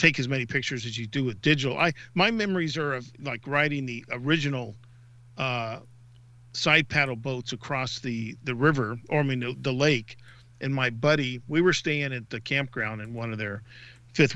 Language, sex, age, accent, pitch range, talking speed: English, male, 50-69, American, 120-150 Hz, 190 wpm